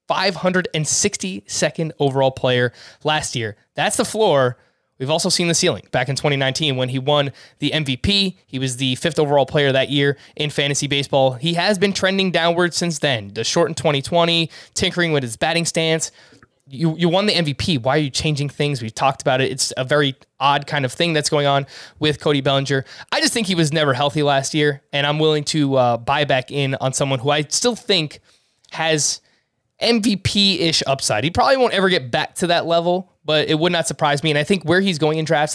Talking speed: 210 wpm